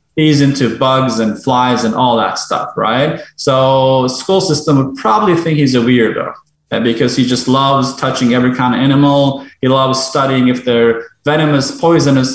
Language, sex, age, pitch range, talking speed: English, male, 20-39, 125-150 Hz, 170 wpm